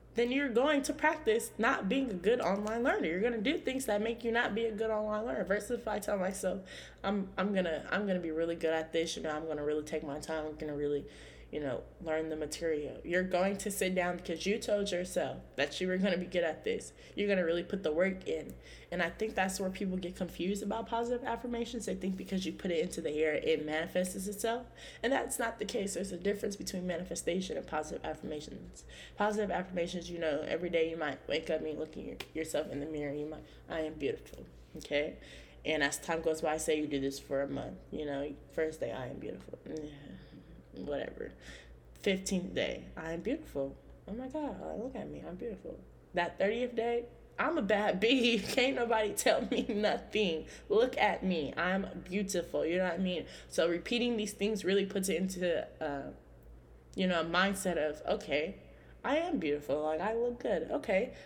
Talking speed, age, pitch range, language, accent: 215 wpm, 20-39, 160-220 Hz, English, American